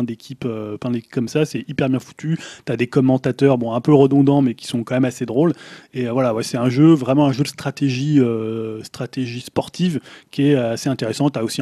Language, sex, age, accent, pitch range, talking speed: French, male, 20-39, French, 120-145 Hz, 230 wpm